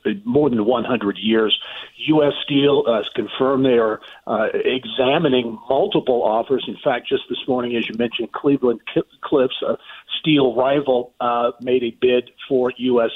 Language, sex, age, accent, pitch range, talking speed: English, male, 50-69, American, 115-135 Hz, 160 wpm